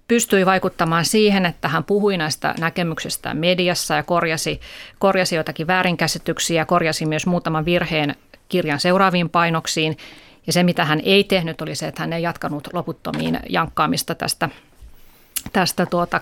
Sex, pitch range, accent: female, 160-190 Hz, native